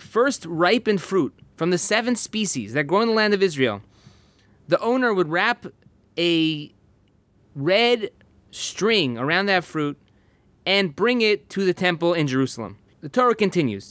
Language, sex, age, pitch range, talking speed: English, male, 20-39, 145-190 Hz, 150 wpm